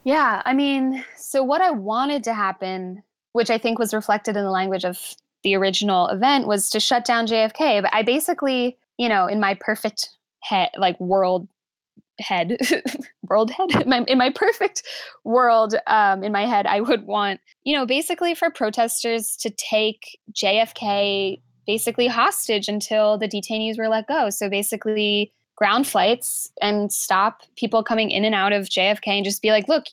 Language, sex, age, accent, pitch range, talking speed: English, female, 10-29, American, 200-240 Hz, 175 wpm